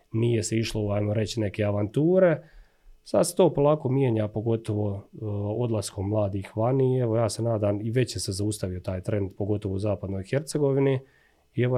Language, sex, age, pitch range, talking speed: Croatian, male, 30-49, 105-130 Hz, 170 wpm